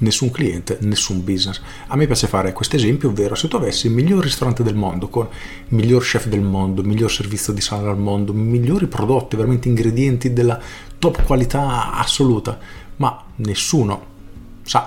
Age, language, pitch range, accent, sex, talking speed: 40-59, Italian, 100-125 Hz, native, male, 180 wpm